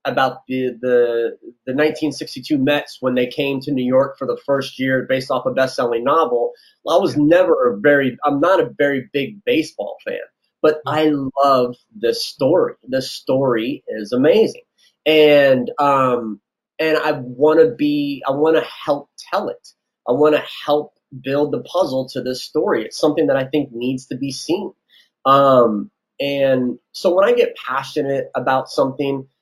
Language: English